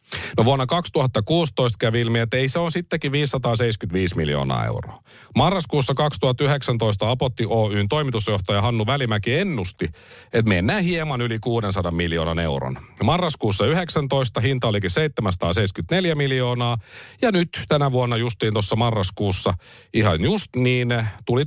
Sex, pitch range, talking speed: male, 95-140 Hz, 125 wpm